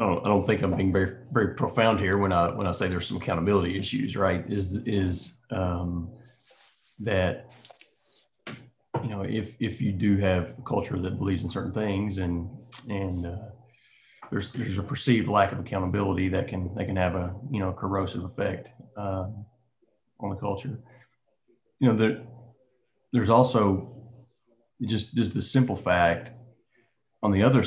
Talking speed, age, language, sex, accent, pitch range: 160 wpm, 30-49, English, male, American, 90-120 Hz